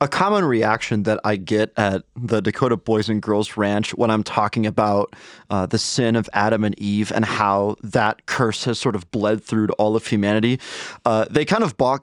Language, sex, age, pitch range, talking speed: English, male, 30-49, 105-140 Hz, 210 wpm